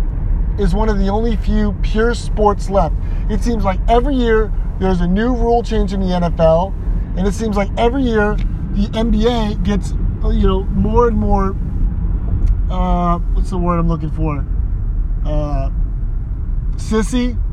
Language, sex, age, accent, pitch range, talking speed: English, male, 30-49, American, 90-125 Hz, 155 wpm